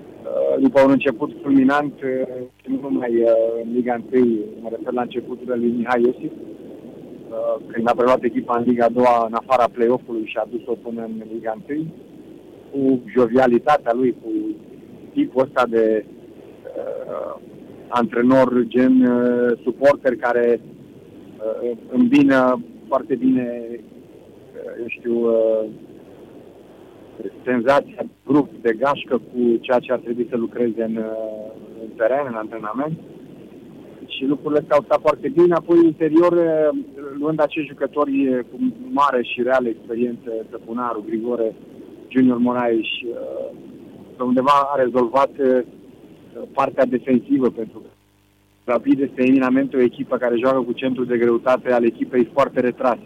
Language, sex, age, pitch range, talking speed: Romanian, male, 50-69, 115-140 Hz, 125 wpm